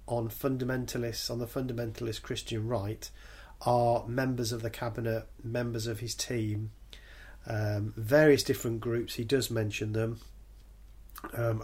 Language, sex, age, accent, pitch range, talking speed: English, male, 40-59, British, 110-130 Hz, 130 wpm